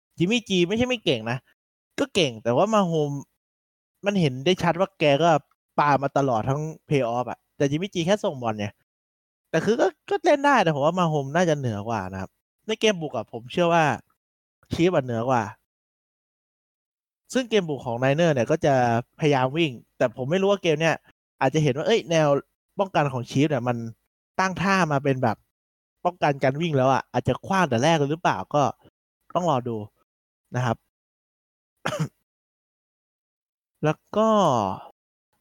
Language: Thai